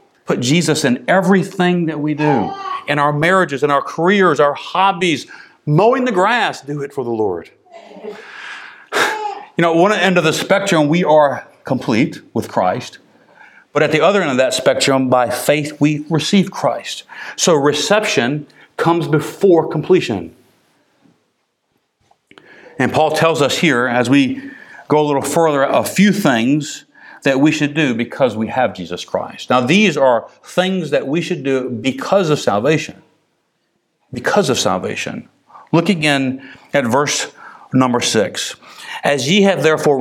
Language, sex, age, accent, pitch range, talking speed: English, male, 50-69, American, 145-195 Hz, 150 wpm